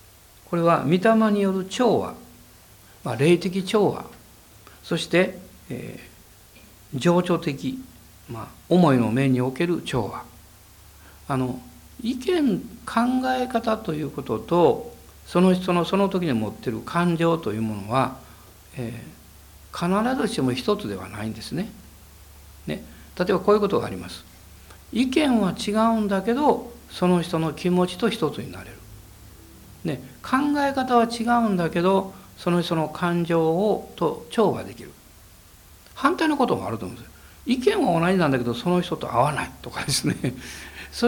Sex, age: male, 60-79